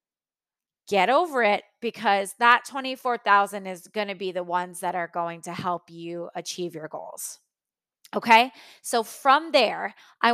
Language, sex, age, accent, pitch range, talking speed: English, female, 20-39, American, 200-270 Hz, 150 wpm